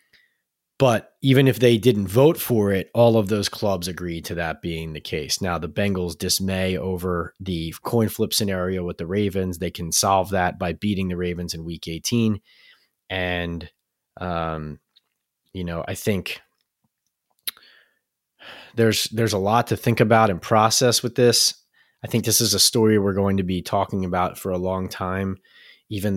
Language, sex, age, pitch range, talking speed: English, male, 30-49, 90-110 Hz, 170 wpm